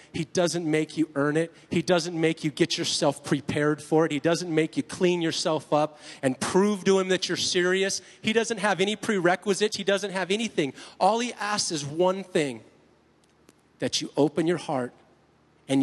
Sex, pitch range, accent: male, 130-190 Hz, American